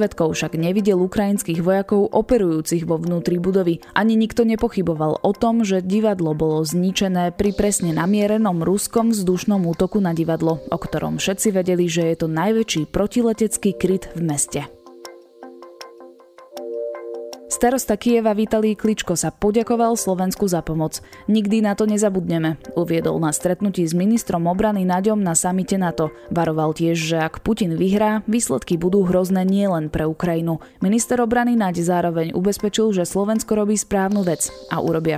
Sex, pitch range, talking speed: female, 170-210 Hz, 145 wpm